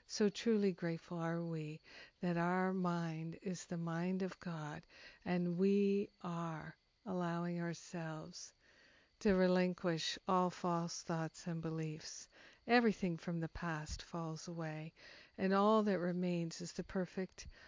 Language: English